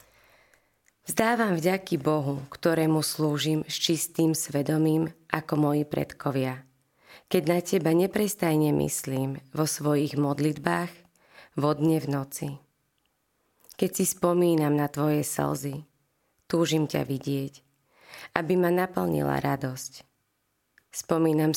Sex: female